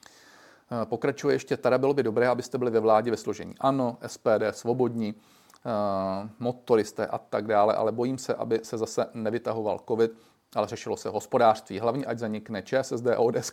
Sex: male